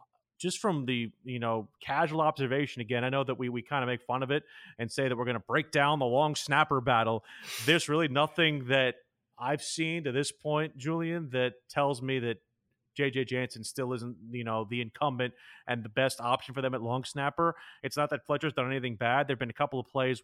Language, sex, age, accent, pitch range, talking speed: English, male, 30-49, American, 120-140 Hz, 220 wpm